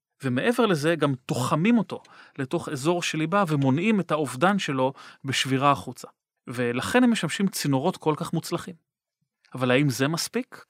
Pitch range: 135-185 Hz